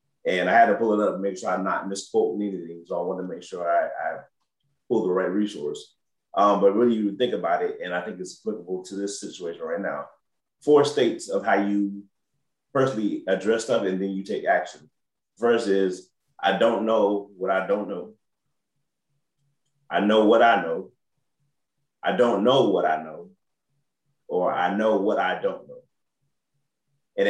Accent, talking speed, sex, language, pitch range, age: American, 185 wpm, male, English, 100-140 Hz, 30-49